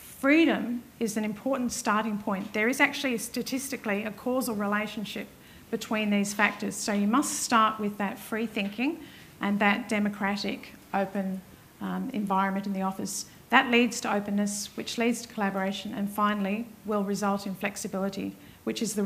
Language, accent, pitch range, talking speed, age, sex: English, Australian, 200-235 Hz, 155 wpm, 50-69, female